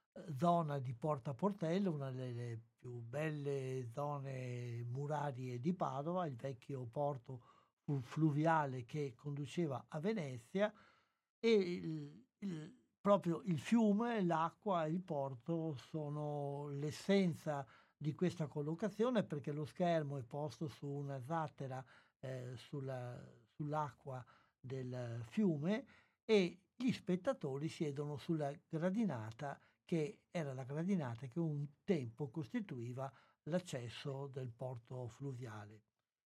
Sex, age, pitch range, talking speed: male, 60-79, 130-170 Hz, 105 wpm